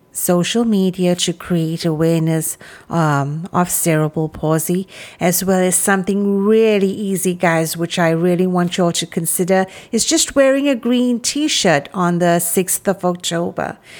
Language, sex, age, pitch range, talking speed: English, female, 50-69, 175-210 Hz, 150 wpm